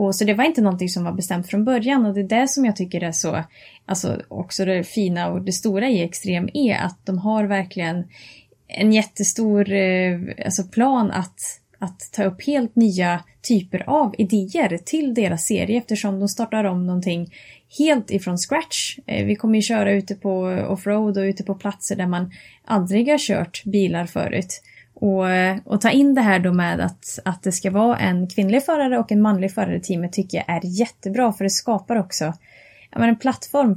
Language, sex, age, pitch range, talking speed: Swedish, female, 20-39, 185-225 Hz, 190 wpm